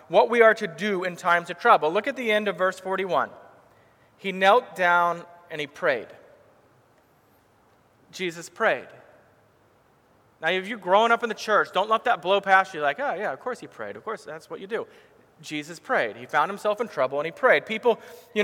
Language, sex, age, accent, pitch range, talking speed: English, male, 30-49, American, 160-205 Hz, 210 wpm